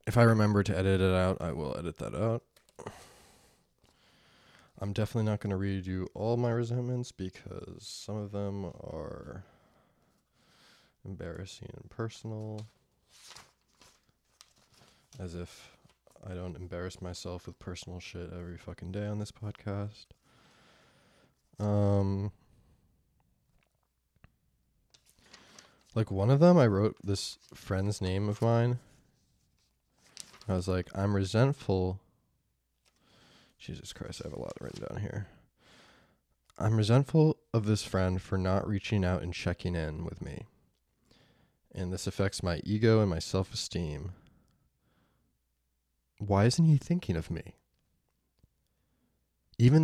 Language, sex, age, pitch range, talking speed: English, male, 20-39, 90-110 Hz, 120 wpm